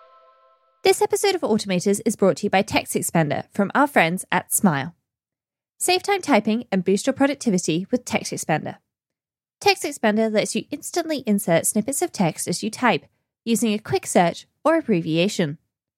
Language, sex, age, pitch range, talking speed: English, female, 10-29, 190-285 Hz, 165 wpm